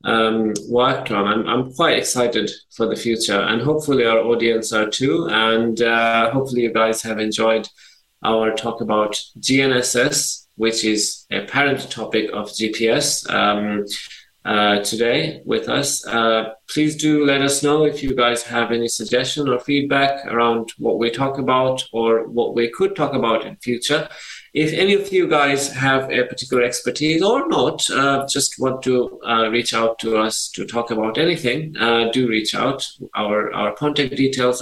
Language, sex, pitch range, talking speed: English, male, 110-135 Hz, 170 wpm